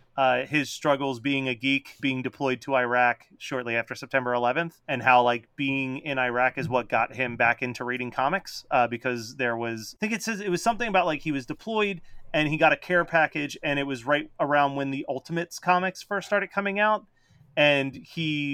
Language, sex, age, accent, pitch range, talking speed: English, male, 30-49, American, 120-150 Hz, 210 wpm